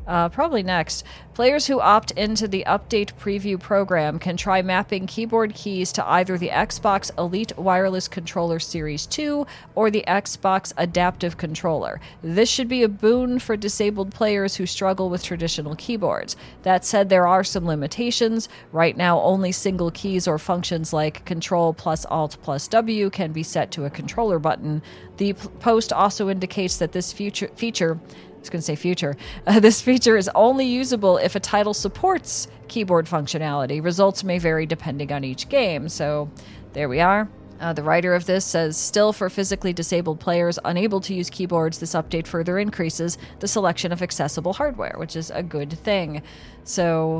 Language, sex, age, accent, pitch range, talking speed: English, female, 40-59, American, 165-210 Hz, 170 wpm